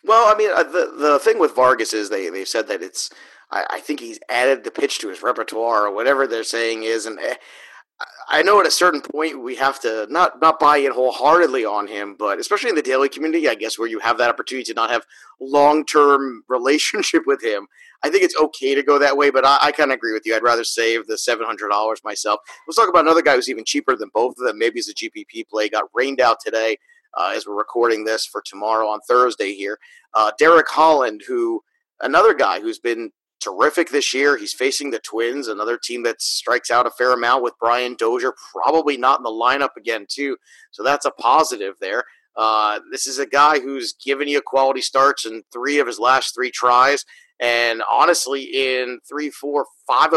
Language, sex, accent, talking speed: English, male, American, 215 wpm